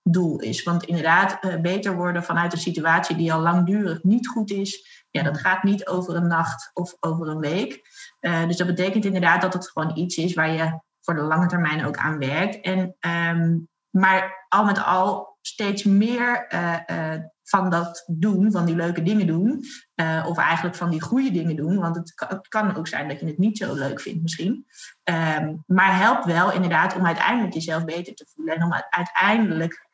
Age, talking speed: 20-39, 190 wpm